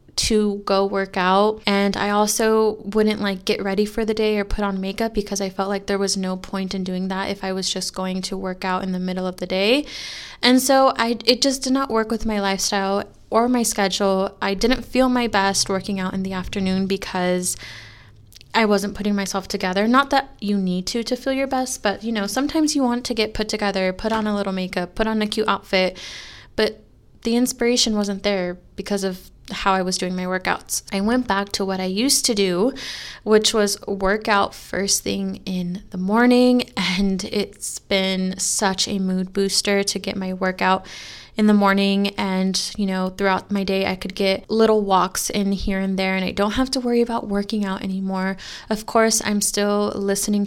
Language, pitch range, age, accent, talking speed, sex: English, 190-220 Hz, 20-39, American, 210 wpm, female